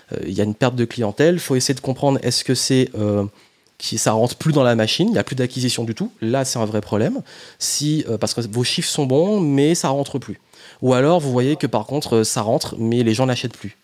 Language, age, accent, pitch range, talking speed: French, 30-49, French, 110-135 Hz, 270 wpm